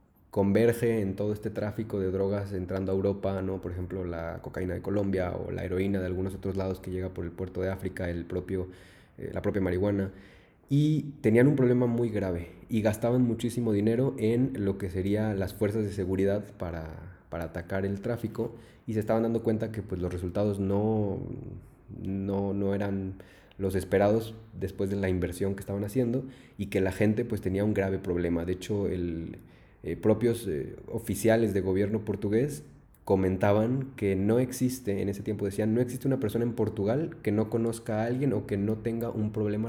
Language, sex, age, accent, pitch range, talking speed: Spanish, male, 20-39, Mexican, 95-115 Hz, 190 wpm